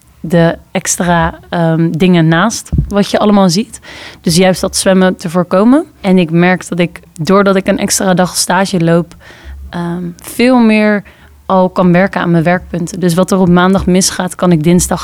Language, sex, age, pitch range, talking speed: Dutch, female, 20-39, 170-195 Hz, 170 wpm